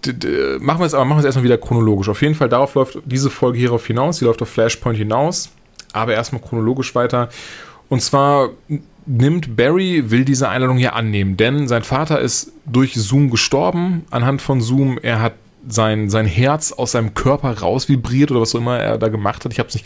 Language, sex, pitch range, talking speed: German, male, 115-135 Hz, 215 wpm